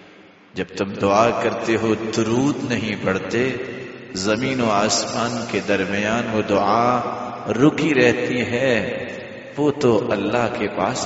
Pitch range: 115-170 Hz